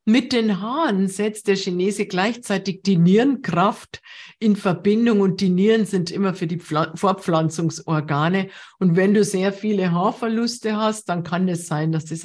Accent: German